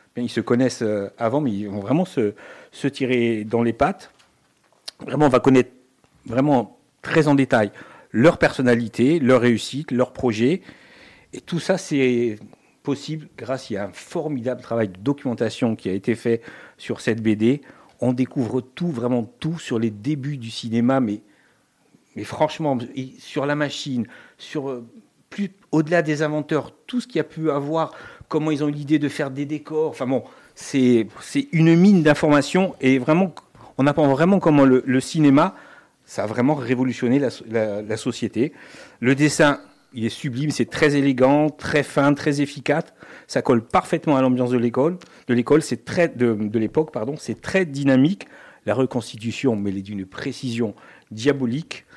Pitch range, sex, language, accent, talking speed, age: 120-150 Hz, male, French, French, 160 wpm, 50-69